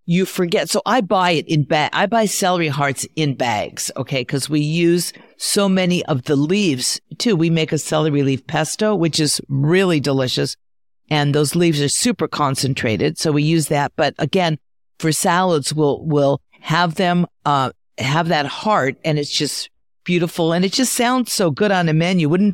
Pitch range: 145-180 Hz